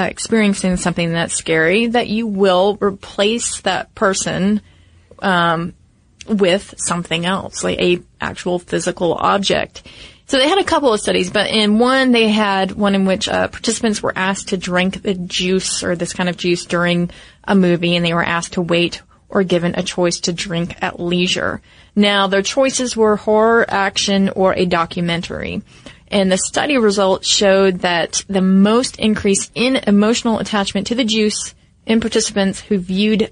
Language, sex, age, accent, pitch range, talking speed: English, female, 30-49, American, 180-210 Hz, 165 wpm